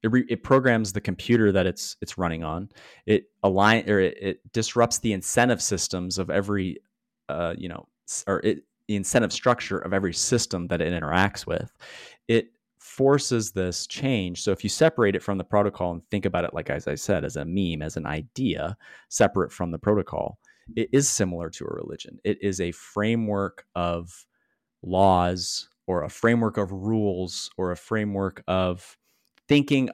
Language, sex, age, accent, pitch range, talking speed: English, male, 30-49, American, 90-105 Hz, 175 wpm